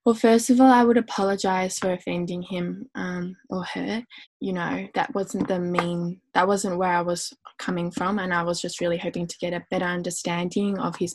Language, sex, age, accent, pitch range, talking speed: English, female, 10-29, Australian, 180-225 Hz, 210 wpm